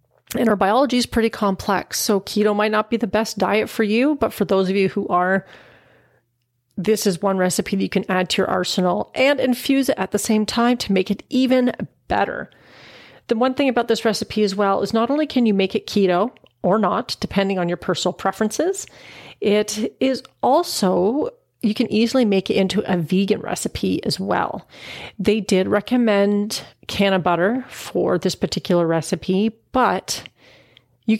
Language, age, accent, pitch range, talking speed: English, 40-59, American, 180-220 Hz, 185 wpm